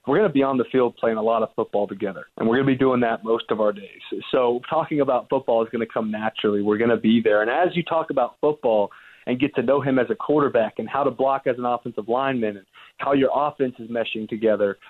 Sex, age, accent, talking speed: male, 30-49, American, 270 wpm